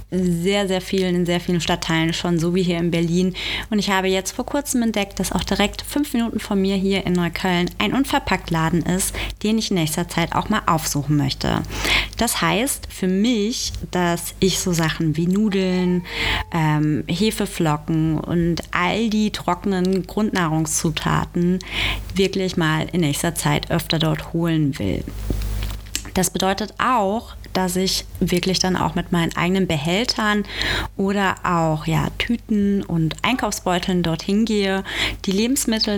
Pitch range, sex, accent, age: 160-195 Hz, female, German, 20-39